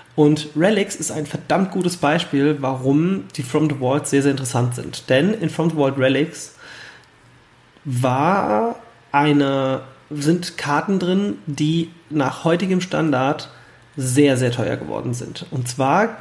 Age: 30-49